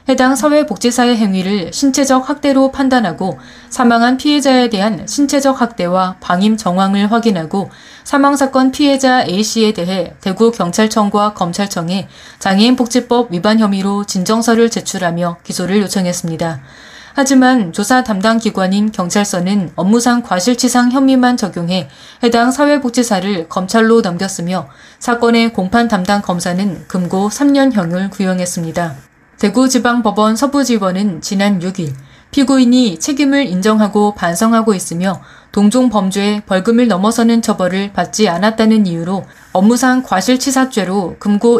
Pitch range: 190-245 Hz